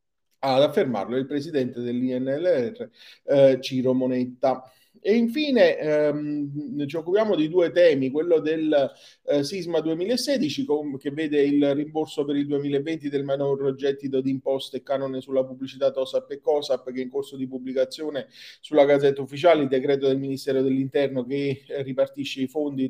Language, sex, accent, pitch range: Italian, male, native, 140-200 Hz